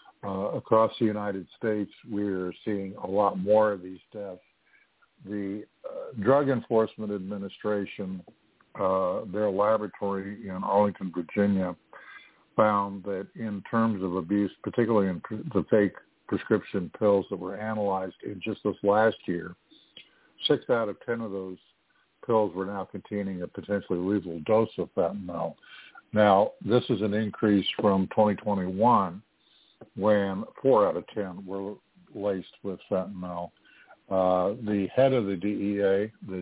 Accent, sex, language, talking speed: American, male, English, 140 wpm